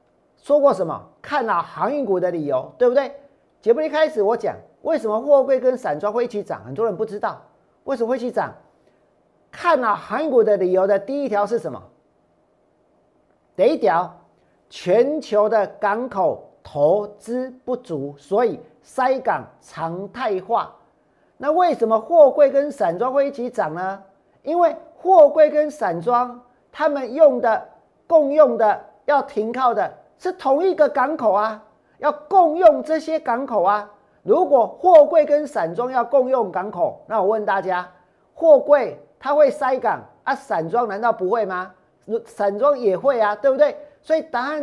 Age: 40-59